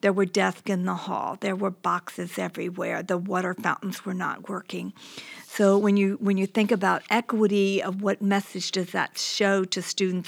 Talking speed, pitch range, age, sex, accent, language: 185 wpm, 195-225 Hz, 50-69, female, American, English